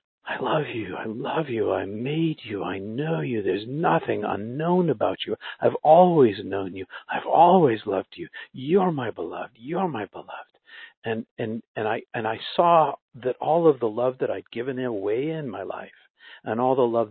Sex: male